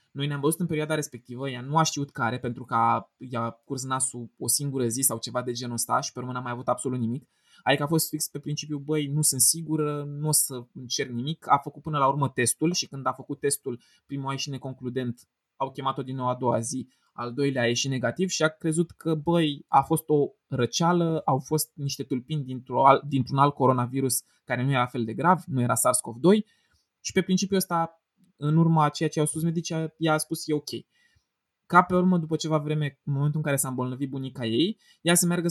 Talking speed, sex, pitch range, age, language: 225 wpm, male, 130-165 Hz, 20-39, Romanian